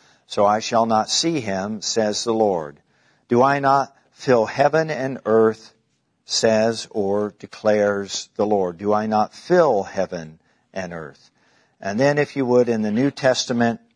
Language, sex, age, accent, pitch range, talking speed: English, male, 50-69, American, 105-125 Hz, 160 wpm